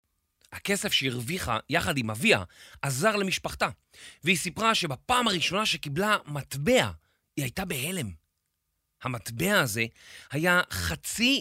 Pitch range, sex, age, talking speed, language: 115-195 Hz, male, 30-49, 105 wpm, Hebrew